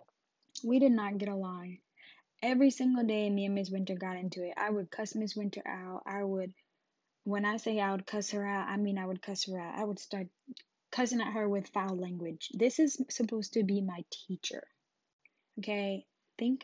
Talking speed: 205 wpm